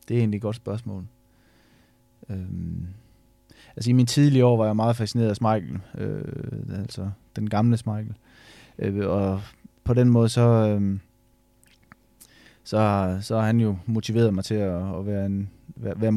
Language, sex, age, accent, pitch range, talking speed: Danish, male, 20-39, native, 105-120 Hz, 160 wpm